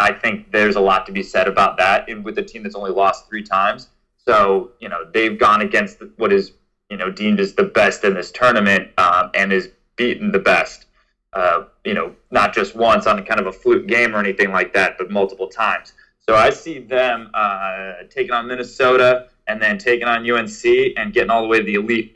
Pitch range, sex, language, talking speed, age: 100-130 Hz, male, English, 225 wpm, 20-39